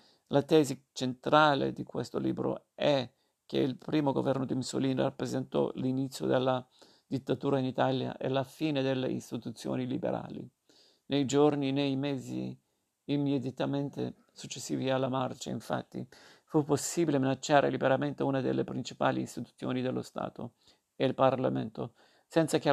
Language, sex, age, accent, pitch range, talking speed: Italian, male, 50-69, native, 125-140 Hz, 130 wpm